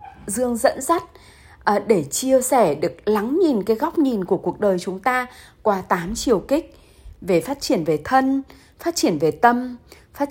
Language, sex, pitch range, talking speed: Vietnamese, female, 170-260 Hz, 180 wpm